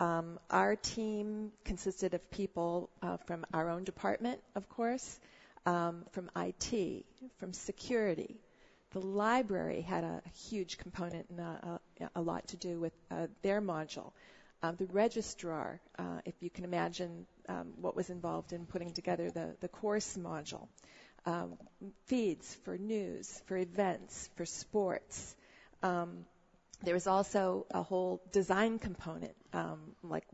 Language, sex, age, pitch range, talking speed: English, female, 40-59, 170-195 Hz, 140 wpm